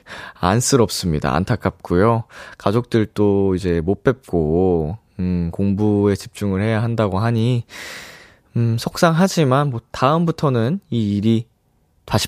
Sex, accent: male, native